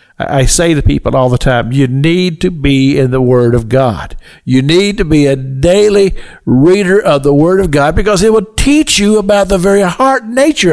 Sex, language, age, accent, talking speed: male, English, 60-79, American, 215 wpm